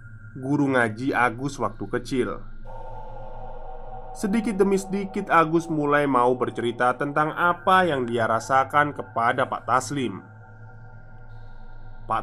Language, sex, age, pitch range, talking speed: Indonesian, male, 20-39, 110-150 Hz, 105 wpm